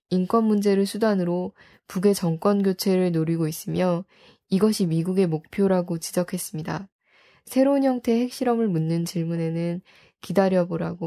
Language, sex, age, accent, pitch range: Korean, female, 20-39, native, 175-205 Hz